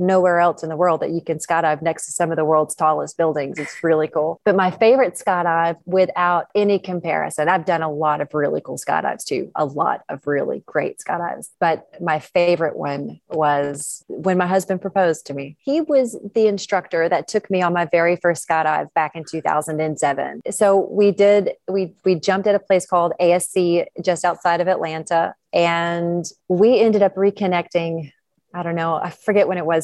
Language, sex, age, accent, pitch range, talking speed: English, female, 30-49, American, 165-195 Hz, 195 wpm